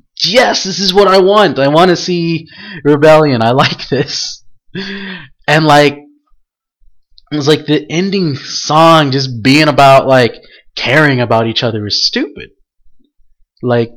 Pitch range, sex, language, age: 125-175 Hz, male, English, 20-39